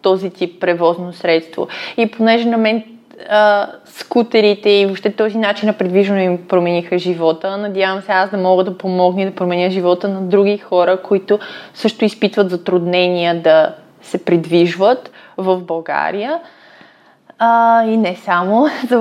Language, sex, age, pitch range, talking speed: Bulgarian, female, 20-39, 180-220 Hz, 145 wpm